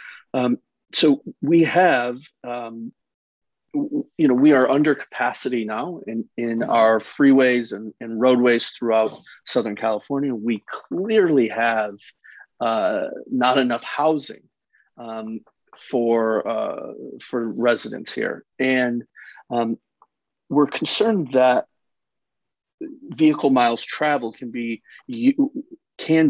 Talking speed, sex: 105 wpm, male